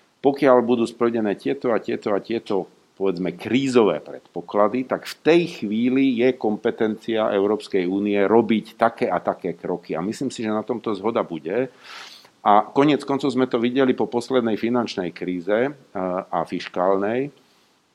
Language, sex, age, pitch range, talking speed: Slovak, male, 50-69, 100-125 Hz, 145 wpm